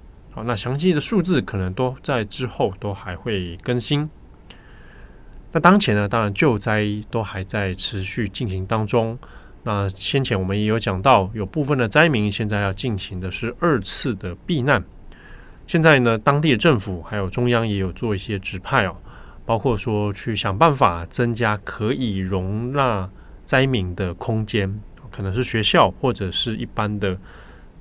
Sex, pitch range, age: male, 95-130 Hz, 20-39